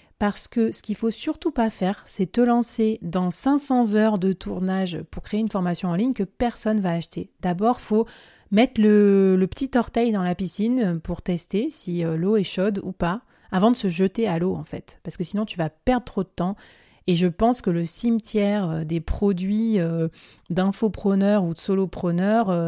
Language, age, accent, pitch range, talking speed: French, 30-49, French, 180-220 Hz, 195 wpm